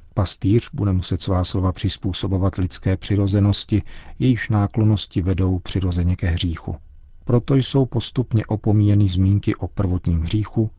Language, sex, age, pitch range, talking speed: Czech, male, 40-59, 90-105 Hz, 120 wpm